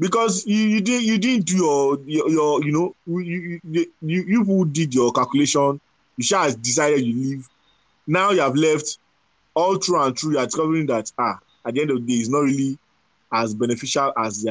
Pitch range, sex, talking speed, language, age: 130-175 Hz, male, 205 wpm, English, 20-39